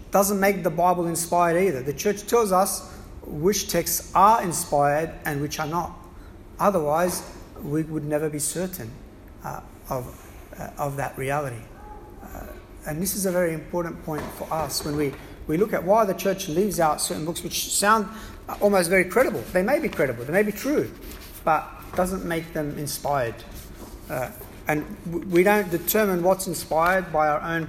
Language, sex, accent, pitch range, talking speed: English, male, Australian, 155-205 Hz, 175 wpm